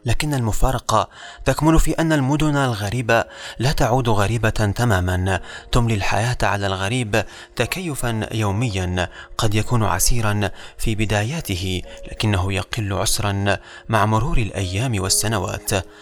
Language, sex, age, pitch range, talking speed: Arabic, male, 30-49, 100-125 Hz, 110 wpm